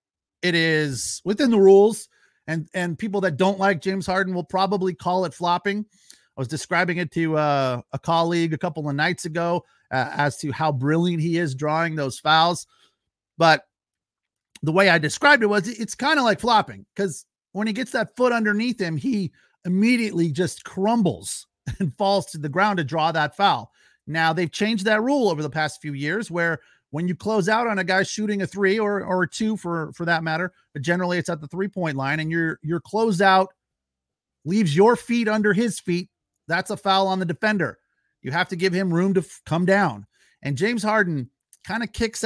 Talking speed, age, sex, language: 200 wpm, 40-59, male, English